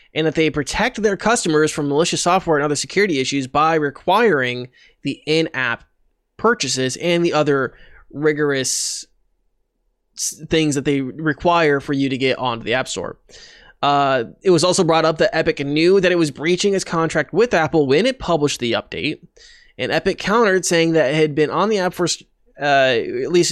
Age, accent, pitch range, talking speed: 20-39, American, 135-180 Hz, 180 wpm